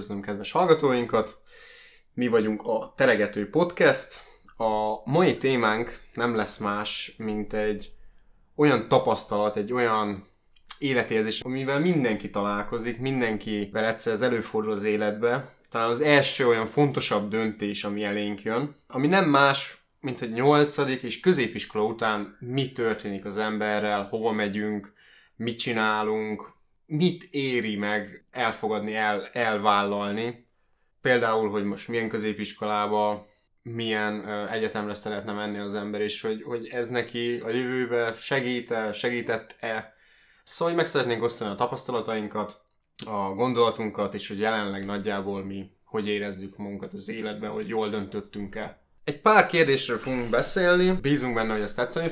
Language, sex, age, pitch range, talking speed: Hungarian, male, 20-39, 105-125 Hz, 130 wpm